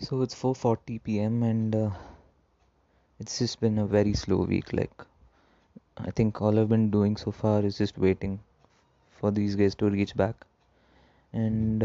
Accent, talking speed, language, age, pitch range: Indian, 160 wpm, English, 20-39, 95-110 Hz